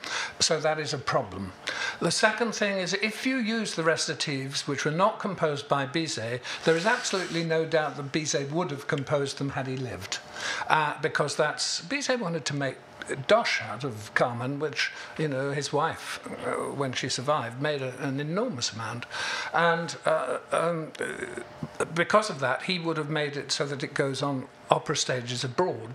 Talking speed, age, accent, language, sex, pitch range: 175 wpm, 60-79, British, English, male, 140-175 Hz